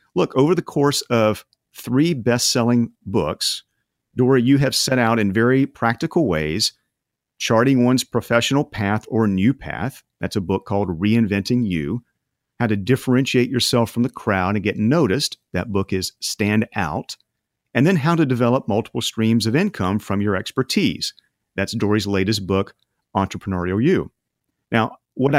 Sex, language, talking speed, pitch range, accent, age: male, English, 155 wpm, 95-125 Hz, American, 40-59